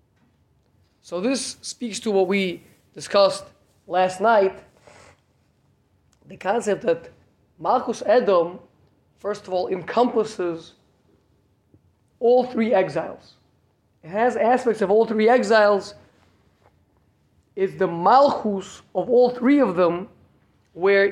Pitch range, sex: 130-220 Hz, male